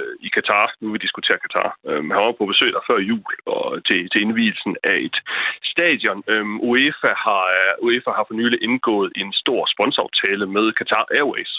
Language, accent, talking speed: Danish, native, 190 wpm